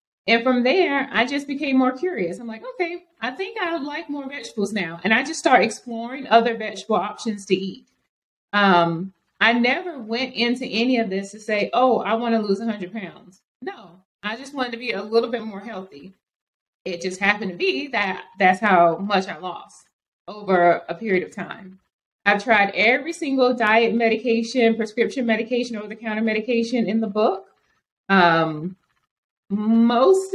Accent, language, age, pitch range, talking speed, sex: American, English, 30-49, 205-260 Hz, 170 wpm, female